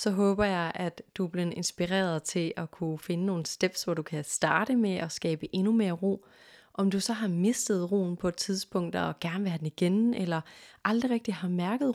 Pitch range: 175-215 Hz